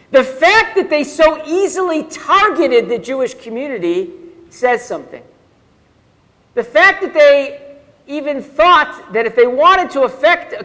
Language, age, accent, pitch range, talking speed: English, 50-69, American, 225-300 Hz, 140 wpm